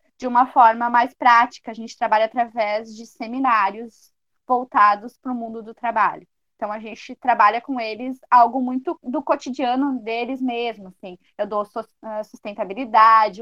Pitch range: 205-250 Hz